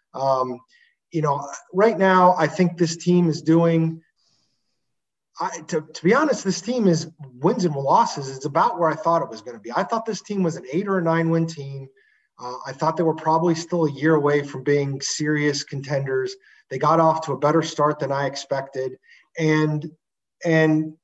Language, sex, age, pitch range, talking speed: English, male, 30-49, 140-175 Hz, 195 wpm